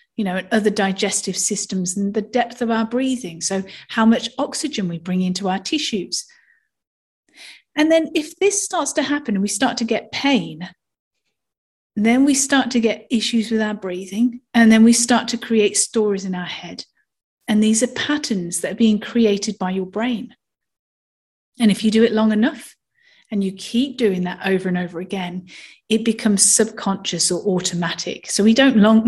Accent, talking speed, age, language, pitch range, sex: British, 180 wpm, 40-59, English, 200-255 Hz, female